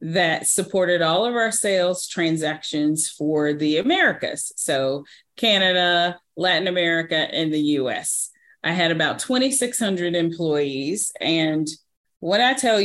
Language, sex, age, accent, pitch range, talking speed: English, female, 30-49, American, 155-185 Hz, 120 wpm